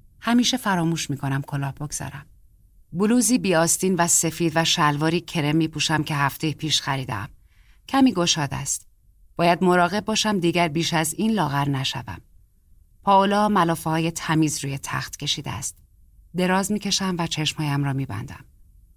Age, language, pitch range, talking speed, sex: 30-49, Persian, 120-180 Hz, 150 wpm, female